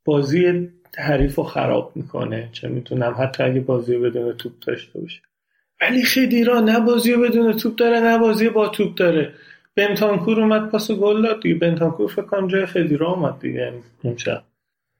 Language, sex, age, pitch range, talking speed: Persian, male, 40-59, 135-180 Hz, 145 wpm